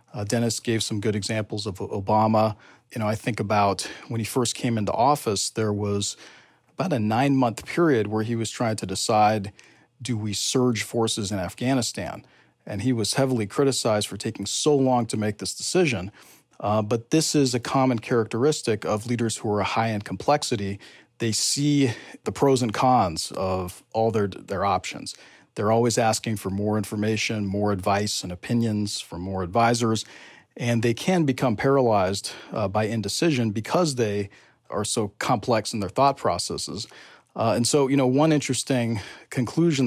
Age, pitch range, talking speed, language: 40-59, 105-130 Hz, 170 wpm, English